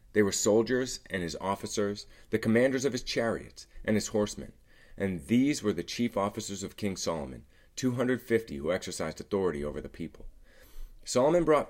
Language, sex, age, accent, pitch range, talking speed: English, male, 30-49, American, 90-110 Hz, 165 wpm